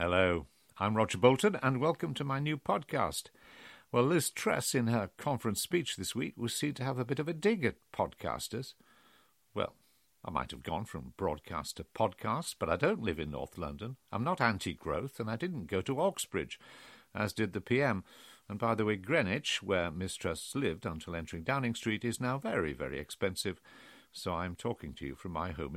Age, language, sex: 50-69, English, male